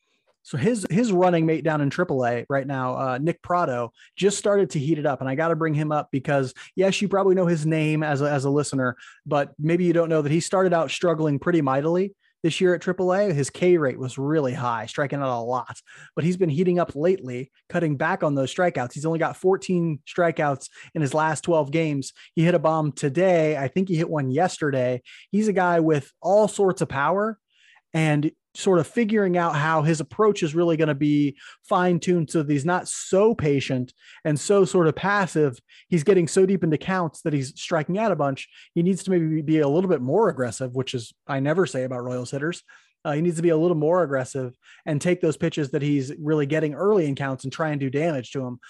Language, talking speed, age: English, 230 wpm, 30-49